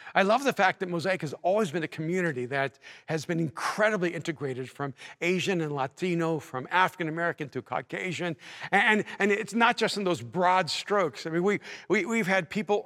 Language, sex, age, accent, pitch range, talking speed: English, male, 50-69, American, 150-190 Hz, 180 wpm